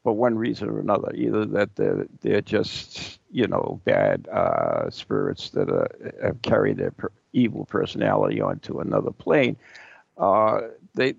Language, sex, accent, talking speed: English, male, American, 150 wpm